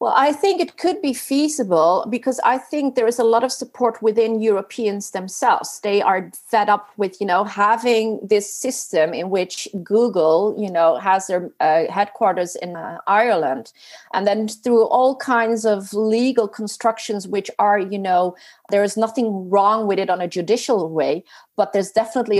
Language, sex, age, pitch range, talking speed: English, female, 40-59, 185-235 Hz, 175 wpm